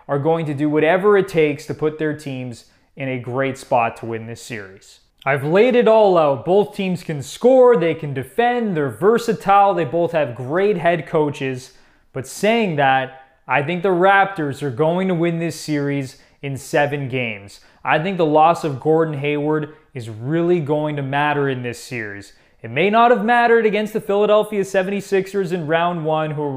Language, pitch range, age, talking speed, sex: English, 135-175 Hz, 20-39, 185 wpm, male